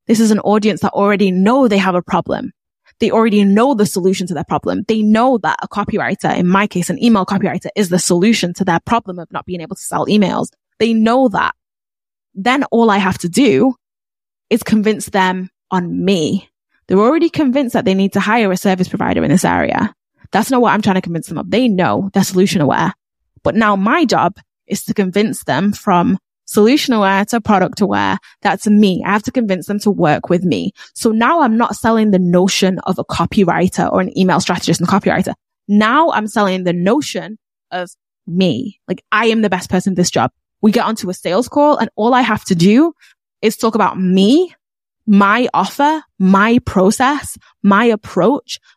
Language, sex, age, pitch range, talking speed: English, female, 20-39, 185-230 Hz, 200 wpm